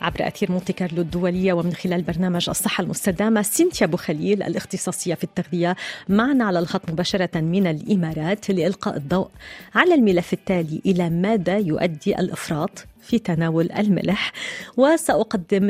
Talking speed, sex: 130 wpm, female